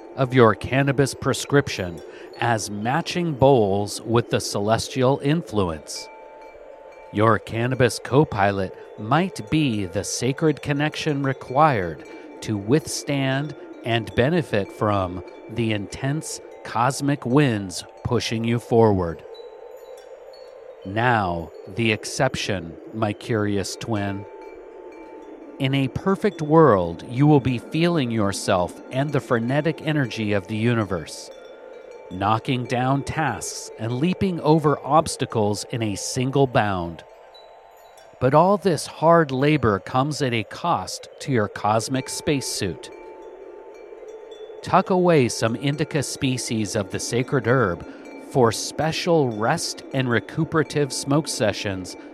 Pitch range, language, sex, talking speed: 110-160 Hz, English, male, 110 wpm